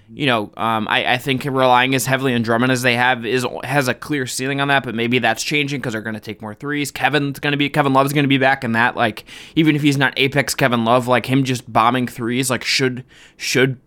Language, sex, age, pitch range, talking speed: English, male, 20-39, 120-150 Hz, 260 wpm